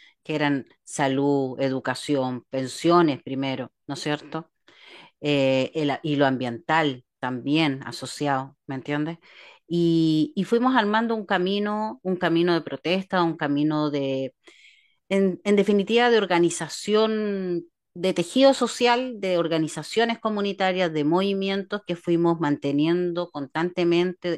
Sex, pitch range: female, 145-195 Hz